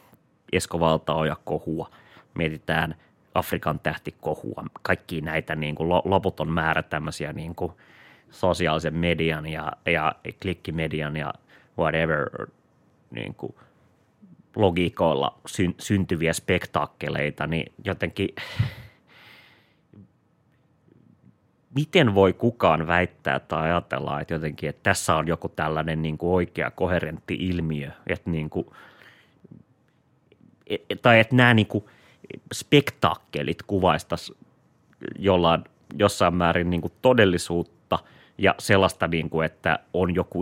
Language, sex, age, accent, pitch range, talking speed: Finnish, male, 30-49, native, 80-95 Hz, 100 wpm